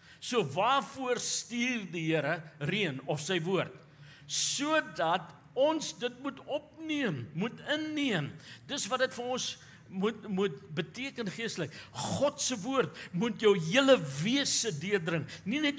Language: English